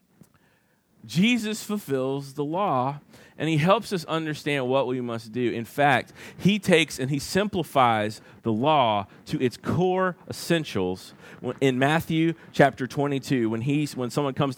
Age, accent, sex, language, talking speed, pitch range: 30-49, American, male, English, 140 wpm, 120-160 Hz